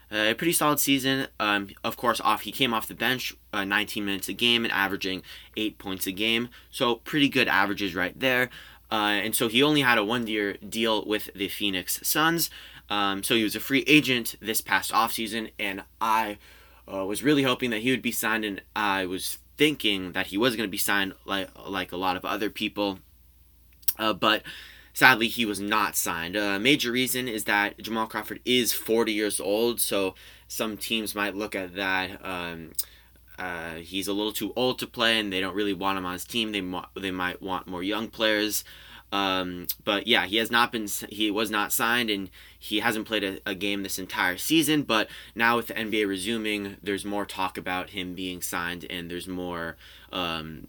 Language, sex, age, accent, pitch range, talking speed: English, male, 20-39, American, 95-115 Hz, 205 wpm